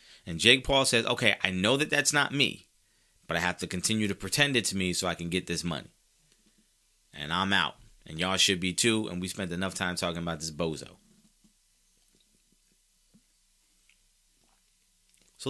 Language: English